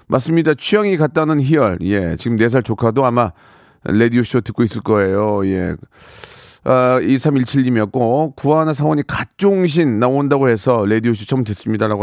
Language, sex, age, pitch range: Korean, male, 40-59, 115-155 Hz